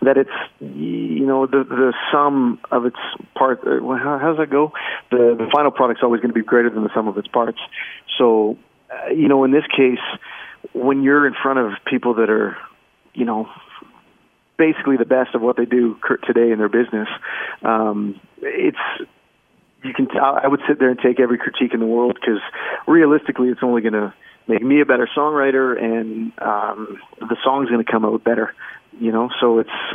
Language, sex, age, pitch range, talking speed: English, male, 40-59, 115-130 Hz, 195 wpm